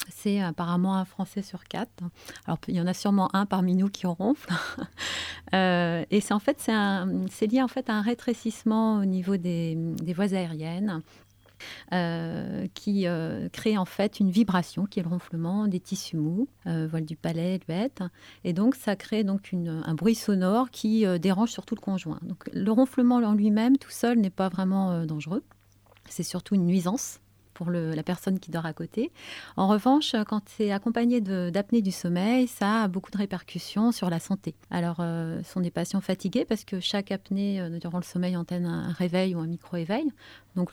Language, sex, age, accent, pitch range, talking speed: French, female, 30-49, French, 170-210 Hz, 200 wpm